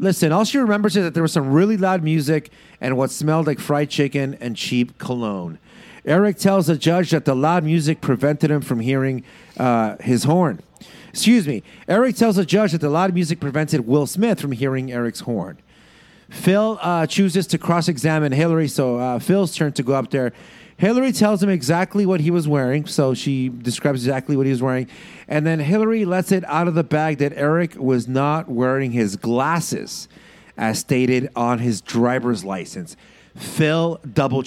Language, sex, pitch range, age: English, male, 130-180 Hz, 40-59